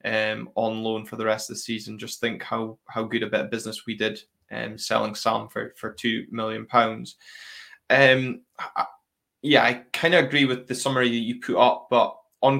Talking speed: 215 wpm